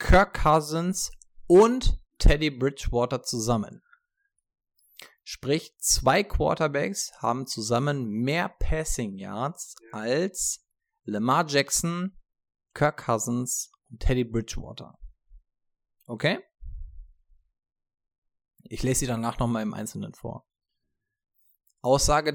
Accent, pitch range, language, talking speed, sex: German, 100-160 Hz, German, 85 wpm, male